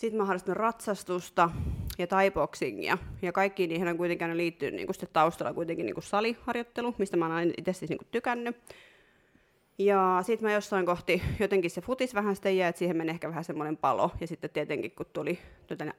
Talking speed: 175 wpm